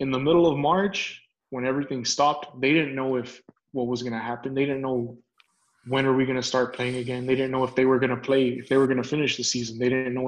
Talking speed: 280 wpm